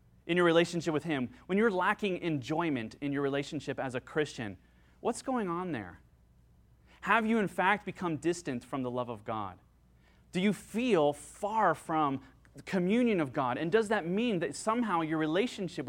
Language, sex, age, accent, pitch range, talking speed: English, male, 30-49, American, 130-195 Hz, 180 wpm